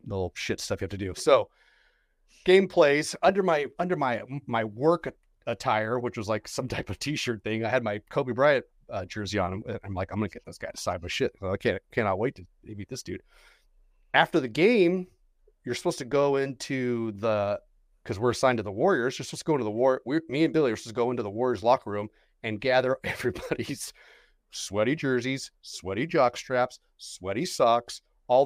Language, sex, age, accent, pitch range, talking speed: English, male, 30-49, American, 110-155 Hz, 210 wpm